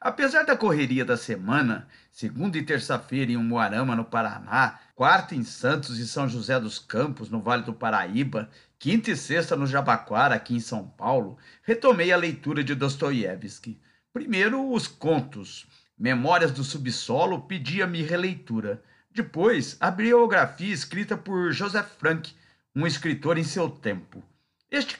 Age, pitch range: 50-69, 125-180 Hz